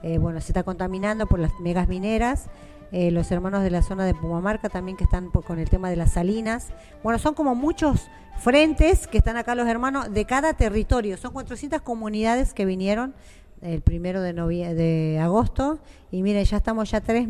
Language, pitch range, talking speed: Spanish, 175-230 Hz, 190 wpm